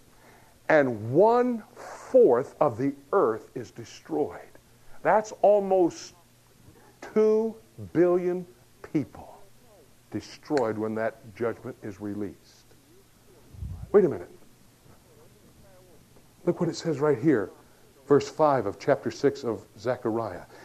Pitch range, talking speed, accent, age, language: 130-210 Hz, 100 wpm, American, 60-79, English